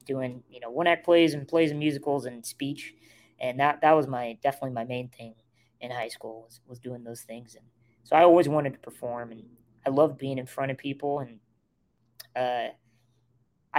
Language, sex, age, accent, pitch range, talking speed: English, female, 20-39, American, 120-150 Hz, 200 wpm